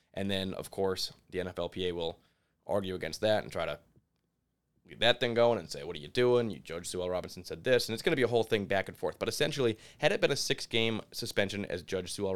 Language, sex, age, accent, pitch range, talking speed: English, male, 20-39, American, 95-110 Hz, 245 wpm